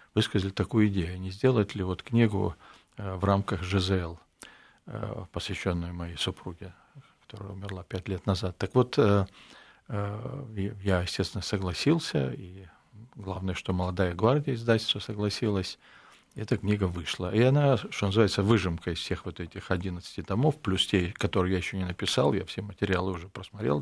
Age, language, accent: 50-69, Russian, native